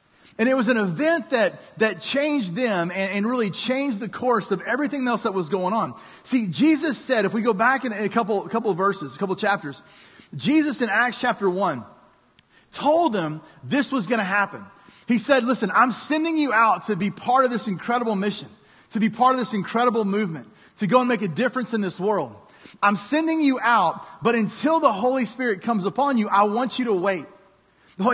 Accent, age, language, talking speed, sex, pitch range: American, 30-49, English, 210 wpm, male, 195-255 Hz